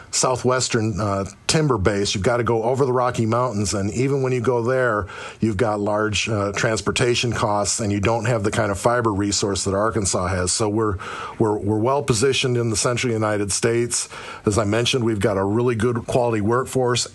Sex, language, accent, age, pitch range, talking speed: male, English, American, 40-59, 105-125 Hz, 200 wpm